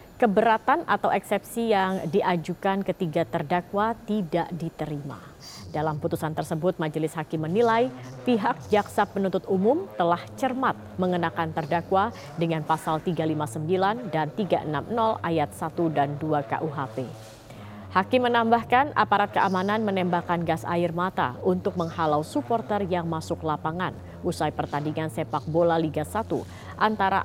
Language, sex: Indonesian, female